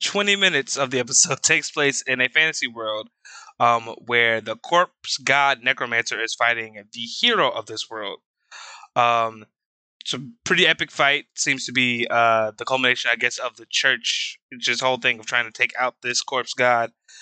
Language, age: English, 20-39